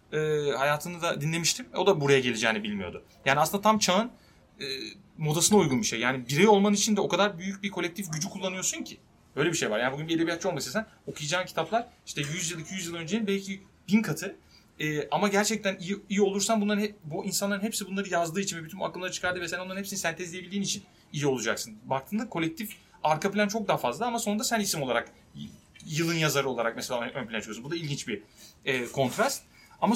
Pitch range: 135-195 Hz